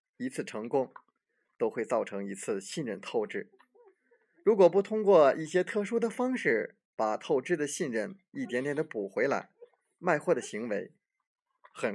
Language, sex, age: Chinese, male, 20-39